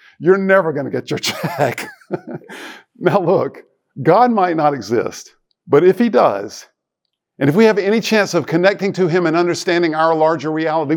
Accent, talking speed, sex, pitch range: American, 175 wpm, male, 135-185 Hz